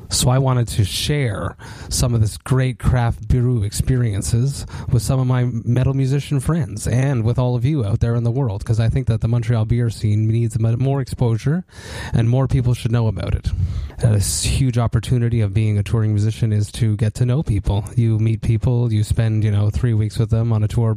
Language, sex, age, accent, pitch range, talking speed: English, male, 30-49, American, 110-125 Hz, 220 wpm